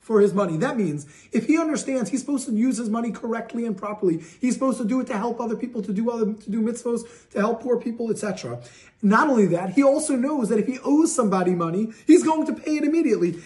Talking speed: 245 wpm